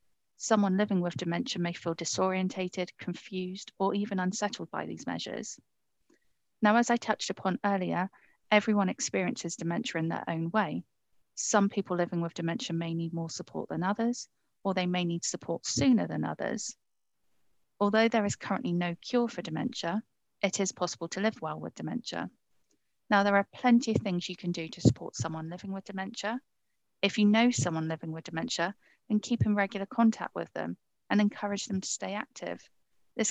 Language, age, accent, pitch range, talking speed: English, 40-59, British, 175-210 Hz, 175 wpm